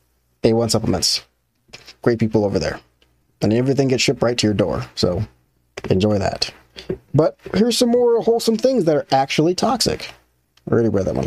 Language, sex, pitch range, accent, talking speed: English, male, 105-170 Hz, American, 170 wpm